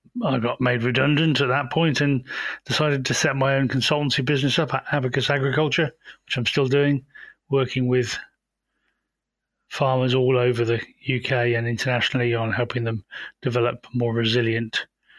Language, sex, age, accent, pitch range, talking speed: English, male, 30-49, British, 120-140 Hz, 150 wpm